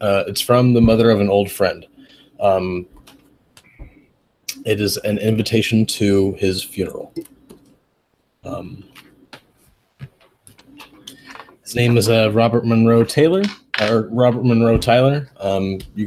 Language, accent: English, American